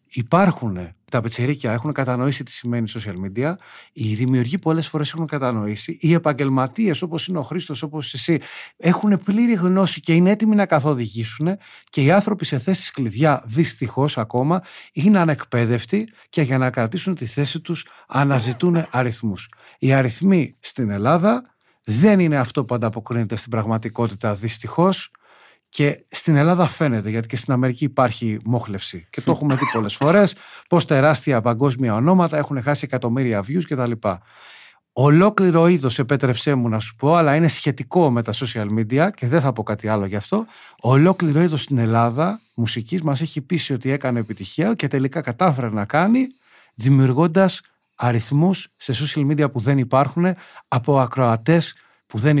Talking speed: 160 wpm